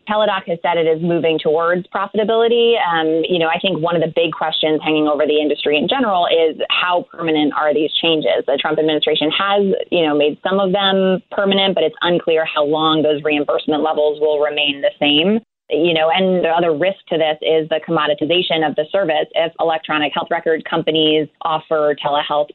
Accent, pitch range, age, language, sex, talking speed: American, 150-175 Hz, 20-39, English, female, 195 wpm